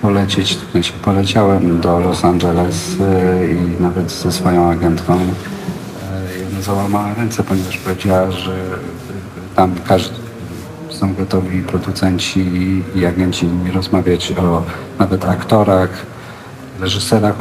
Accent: native